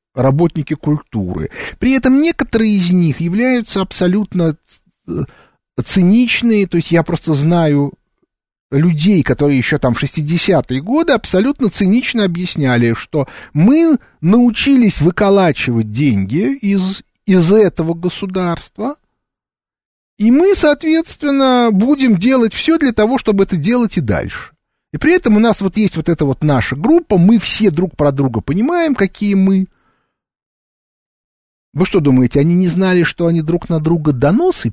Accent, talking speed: native, 135 wpm